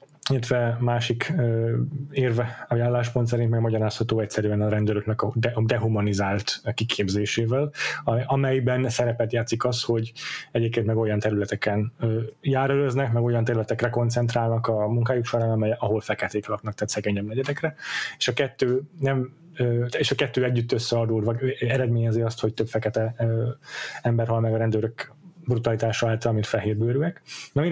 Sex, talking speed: male, 130 wpm